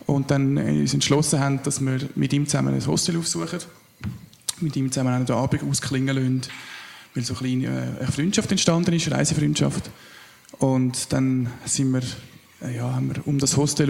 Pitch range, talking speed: 130-155 Hz, 165 wpm